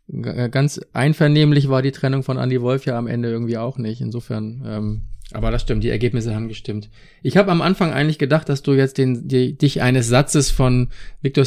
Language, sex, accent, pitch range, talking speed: German, male, German, 125-150 Hz, 195 wpm